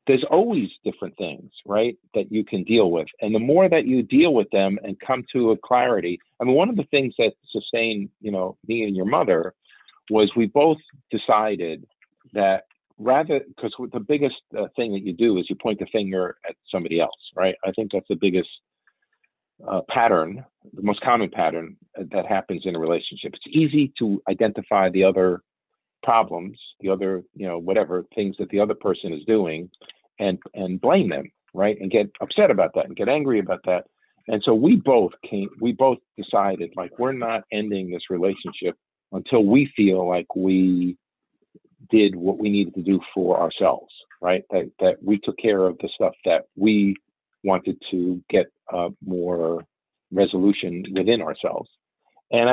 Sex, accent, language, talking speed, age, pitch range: male, American, English, 175 wpm, 50-69, 95-125 Hz